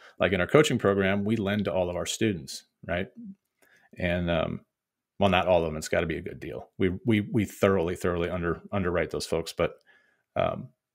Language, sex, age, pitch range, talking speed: English, male, 30-49, 90-110 Hz, 210 wpm